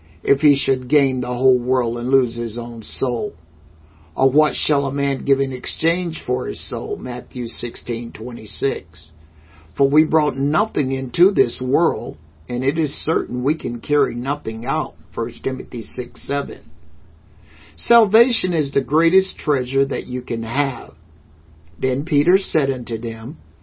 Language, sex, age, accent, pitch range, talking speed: English, male, 50-69, American, 95-155 Hz, 155 wpm